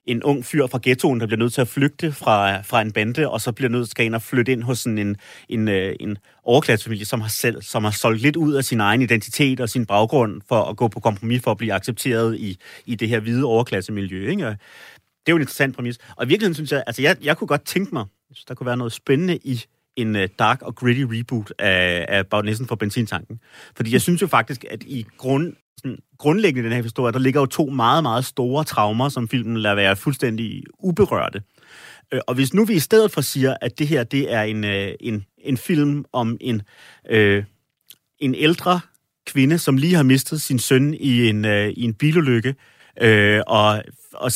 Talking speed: 210 wpm